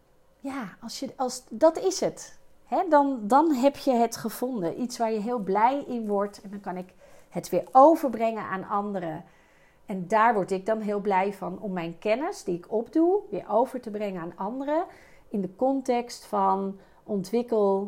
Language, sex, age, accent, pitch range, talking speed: Dutch, female, 40-59, Dutch, 190-240 Hz, 185 wpm